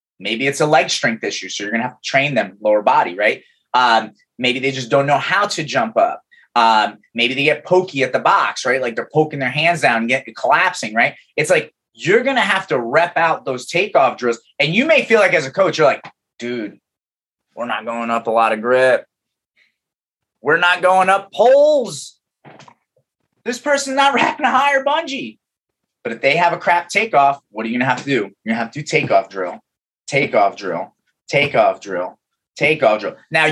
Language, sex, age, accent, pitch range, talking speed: English, male, 30-49, American, 135-185 Hz, 210 wpm